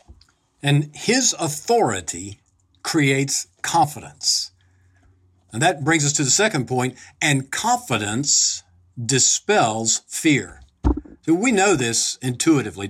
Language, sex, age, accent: English, male, 50-69, American